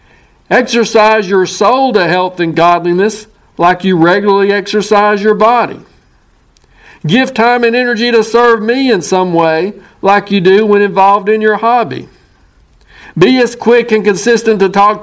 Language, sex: English, male